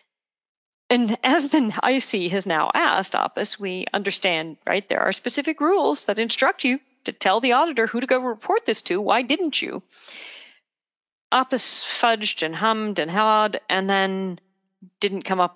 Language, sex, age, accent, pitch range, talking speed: English, female, 40-59, American, 180-260 Hz, 160 wpm